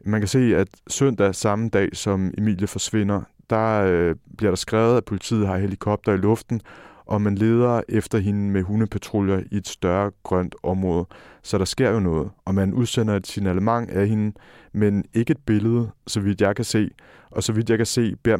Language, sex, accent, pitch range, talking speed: Danish, male, native, 95-110 Hz, 200 wpm